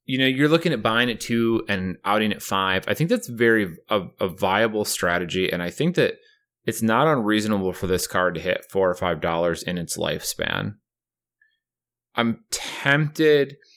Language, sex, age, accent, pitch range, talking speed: English, male, 30-49, American, 90-125 Hz, 180 wpm